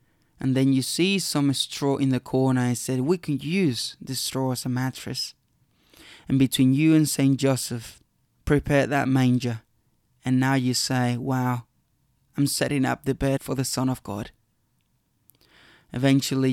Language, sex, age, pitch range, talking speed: English, male, 20-39, 120-135 Hz, 160 wpm